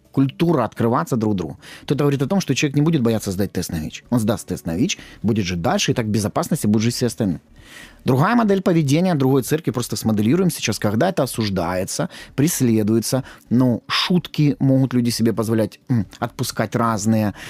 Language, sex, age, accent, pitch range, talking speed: Ukrainian, male, 30-49, native, 115-155 Hz, 185 wpm